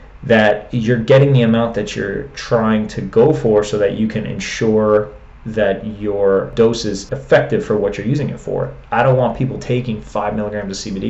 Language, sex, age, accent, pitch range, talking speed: English, male, 30-49, American, 100-120 Hz, 195 wpm